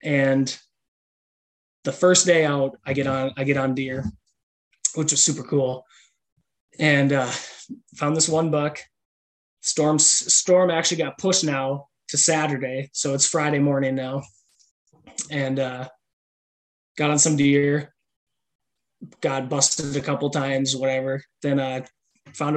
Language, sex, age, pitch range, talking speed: English, male, 20-39, 135-155 Hz, 135 wpm